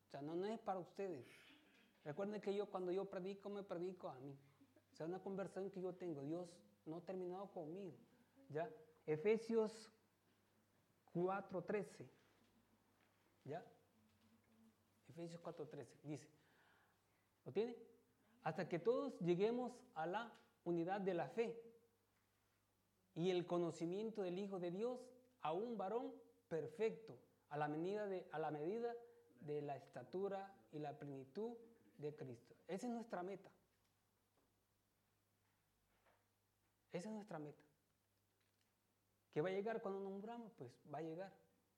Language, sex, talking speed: Italian, male, 130 wpm